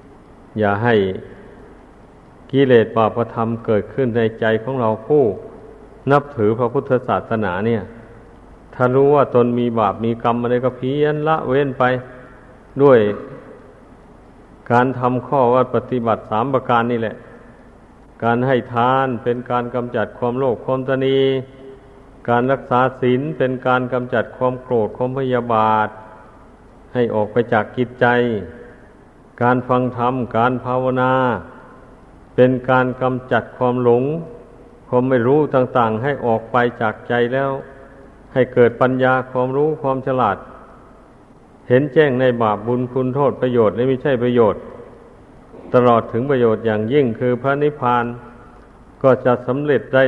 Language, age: Thai, 50-69